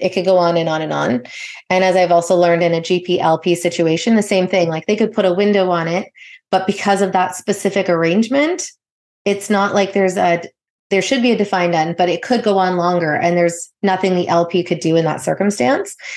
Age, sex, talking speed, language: 30-49, female, 230 wpm, English